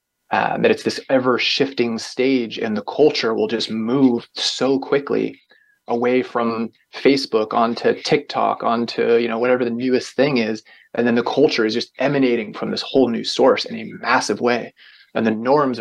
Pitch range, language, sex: 115-135 Hz, English, male